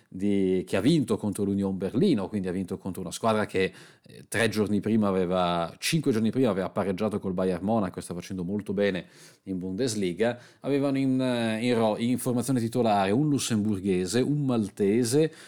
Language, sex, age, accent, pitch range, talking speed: Italian, male, 40-59, native, 100-125 Hz, 165 wpm